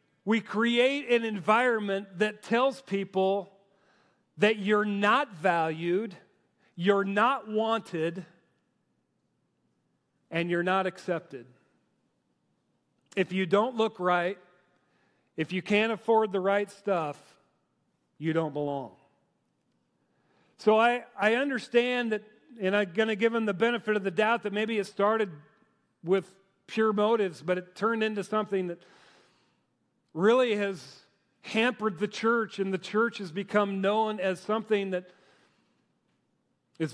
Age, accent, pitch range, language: 40-59, American, 185-220 Hz, English